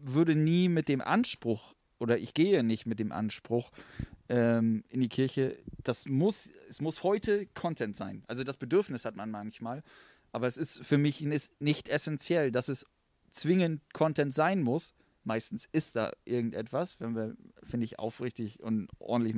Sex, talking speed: male, 165 wpm